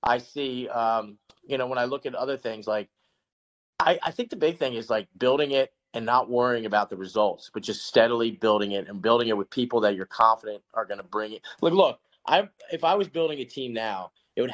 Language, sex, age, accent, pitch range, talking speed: English, male, 30-49, American, 115-130 Hz, 245 wpm